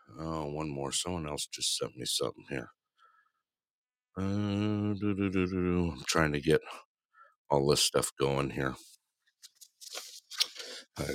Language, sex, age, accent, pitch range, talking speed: English, male, 60-79, American, 75-105 Hz, 115 wpm